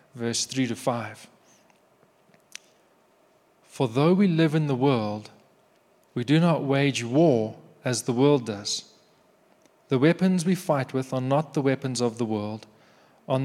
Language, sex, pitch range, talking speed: English, male, 120-160 Hz, 145 wpm